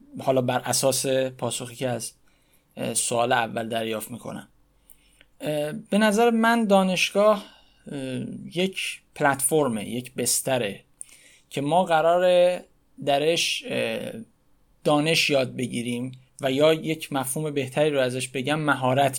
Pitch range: 130-160 Hz